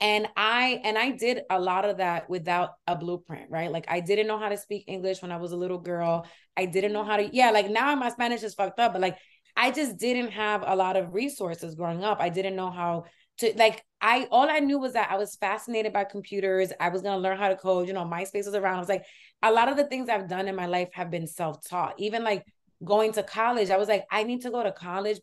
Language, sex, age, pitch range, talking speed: English, female, 20-39, 185-230 Hz, 265 wpm